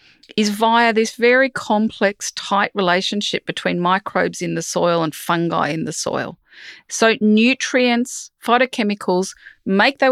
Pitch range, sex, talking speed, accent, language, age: 170-225 Hz, female, 130 wpm, Australian, English, 40-59